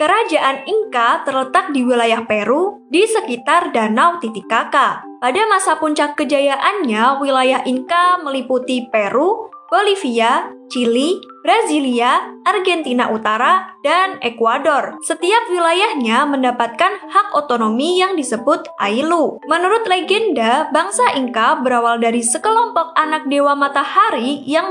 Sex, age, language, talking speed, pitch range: female, 10-29, Indonesian, 105 wpm, 250-360 Hz